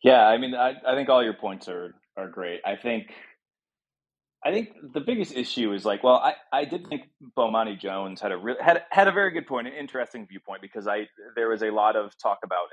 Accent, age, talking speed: American, 30-49, 230 wpm